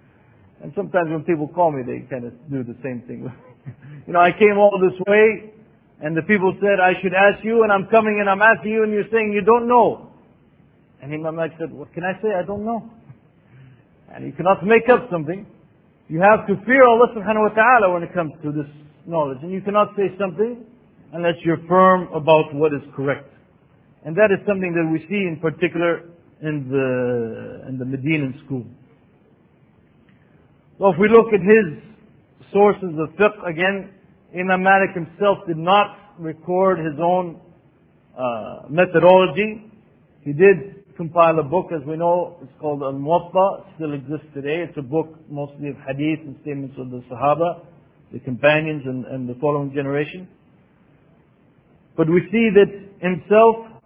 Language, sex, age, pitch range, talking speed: English, male, 50-69, 150-200 Hz, 175 wpm